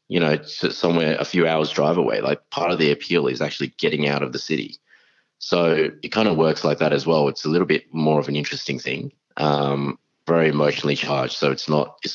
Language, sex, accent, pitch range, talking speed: English, male, Australian, 70-80 Hz, 225 wpm